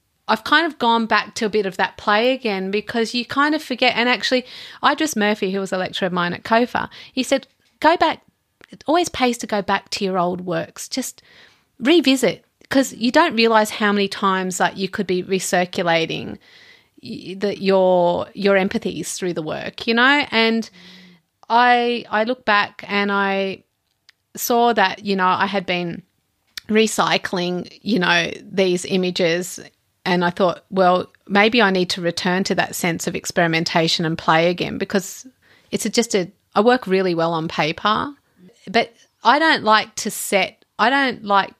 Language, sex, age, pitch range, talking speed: English, female, 30-49, 180-225 Hz, 175 wpm